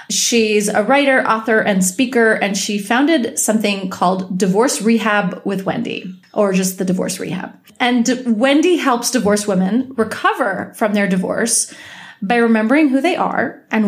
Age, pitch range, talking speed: 30-49, 195-235 Hz, 155 wpm